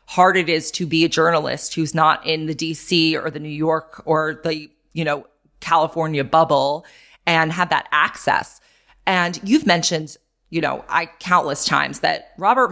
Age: 20-39